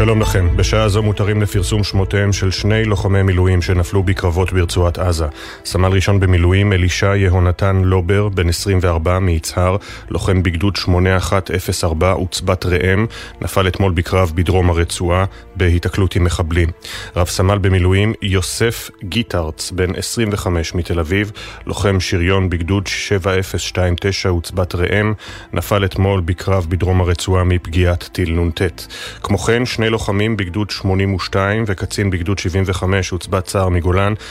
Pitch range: 90-100 Hz